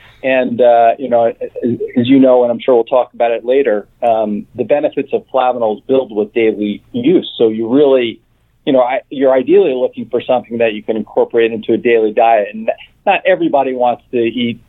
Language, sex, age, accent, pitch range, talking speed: English, male, 40-59, American, 110-135 Hz, 200 wpm